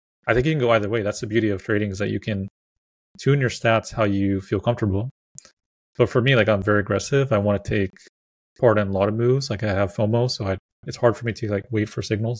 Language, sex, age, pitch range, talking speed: English, male, 30-49, 105-125 Hz, 265 wpm